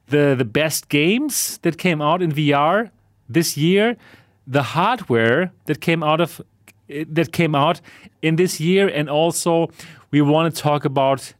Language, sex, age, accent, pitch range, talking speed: English, male, 30-49, German, 130-165 Hz, 160 wpm